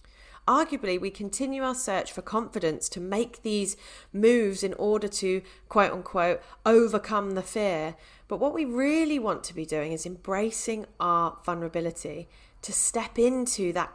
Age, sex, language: 30-49, female, English